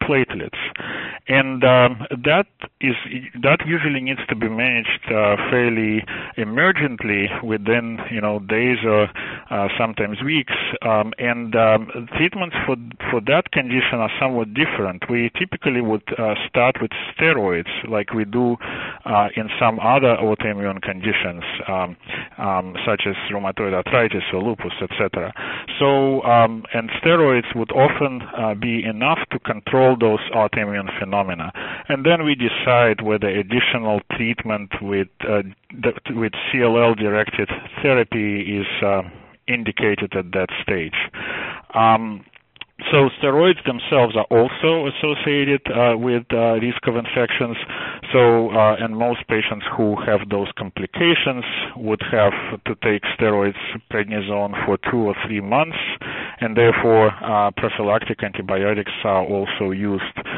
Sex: male